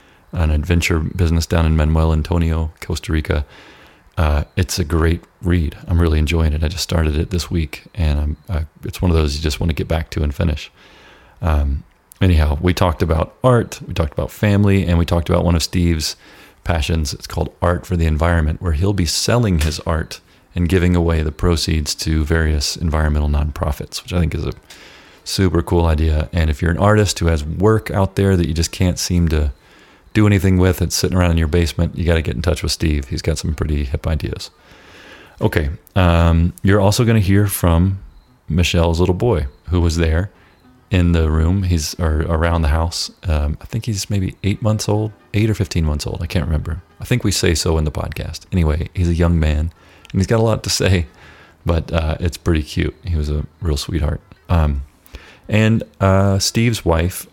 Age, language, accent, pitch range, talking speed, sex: 30-49, English, American, 80-95 Hz, 210 wpm, male